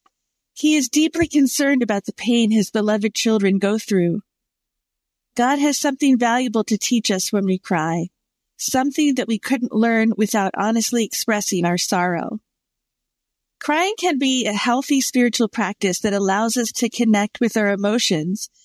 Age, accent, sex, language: 50-69, American, female, English